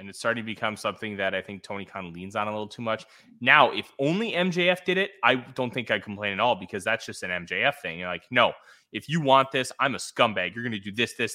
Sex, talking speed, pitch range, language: male, 280 wpm, 105-150 Hz, English